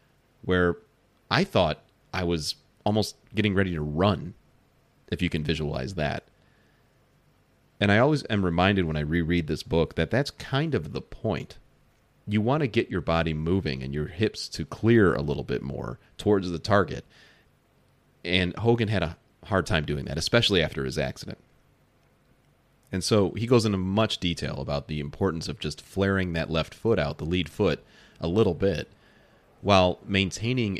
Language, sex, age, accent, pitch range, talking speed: English, male, 30-49, American, 75-105 Hz, 170 wpm